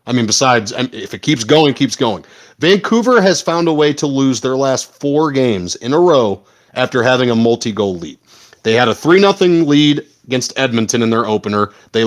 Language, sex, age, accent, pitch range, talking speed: English, male, 30-49, American, 120-170 Hz, 195 wpm